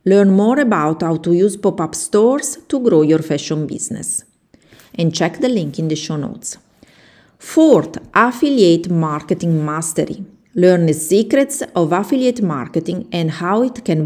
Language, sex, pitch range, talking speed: English, female, 160-225 Hz, 150 wpm